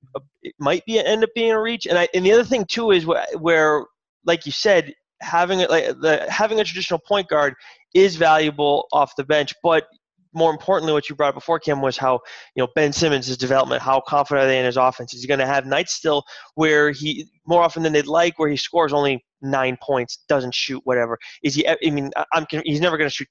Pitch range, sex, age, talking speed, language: 135-165 Hz, male, 20-39, 235 wpm, English